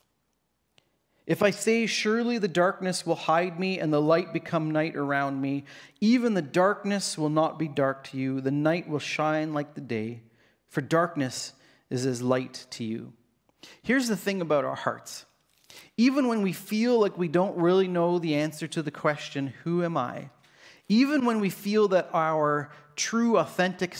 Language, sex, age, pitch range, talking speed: English, male, 40-59, 140-175 Hz, 175 wpm